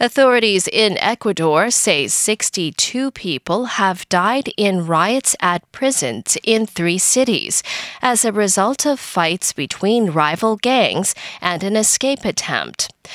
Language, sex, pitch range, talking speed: English, female, 170-245 Hz, 125 wpm